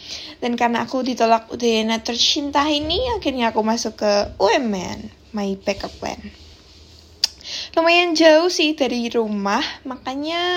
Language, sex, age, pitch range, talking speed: Indonesian, female, 20-39, 225-300 Hz, 120 wpm